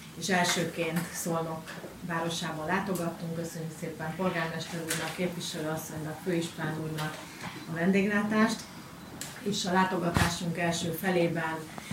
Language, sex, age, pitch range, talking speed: Hungarian, female, 30-49, 160-175 Hz, 100 wpm